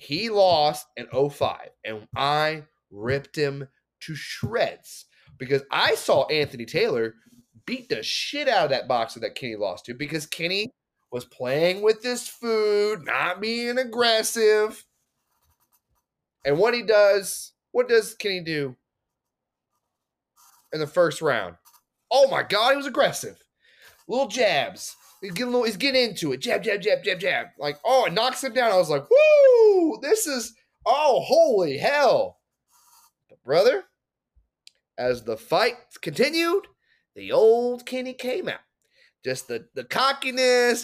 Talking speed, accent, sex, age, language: 145 wpm, American, male, 30-49, English